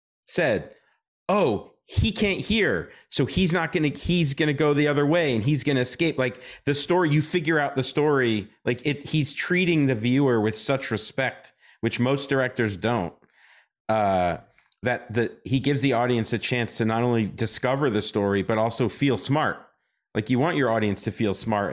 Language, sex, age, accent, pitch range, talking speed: English, male, 40-59, American, 105-135 Hz, 185 wpm